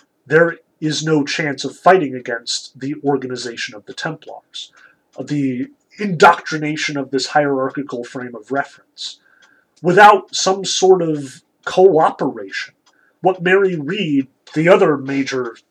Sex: male